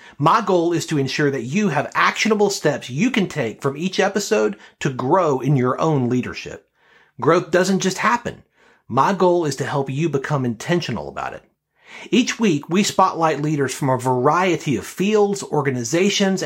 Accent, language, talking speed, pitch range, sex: American, English, 170 wpm, 140-190 Hz, male